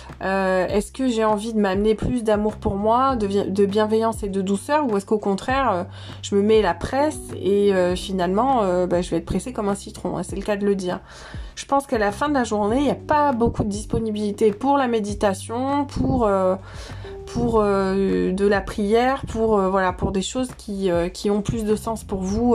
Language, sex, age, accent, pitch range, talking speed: French, female, 20-39, French, 185-230 Hz, 225 wpm